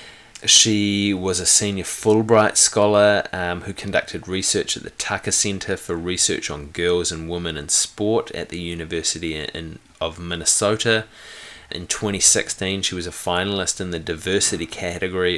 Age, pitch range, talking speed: 30-49, 85-105 Hz, 145 wpm